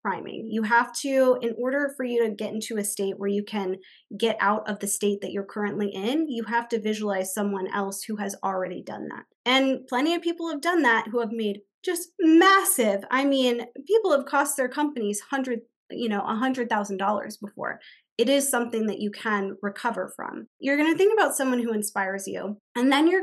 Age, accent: 20-39, American